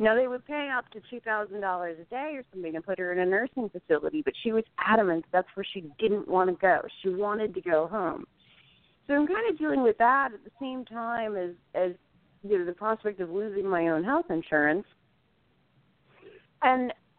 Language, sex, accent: English, female, American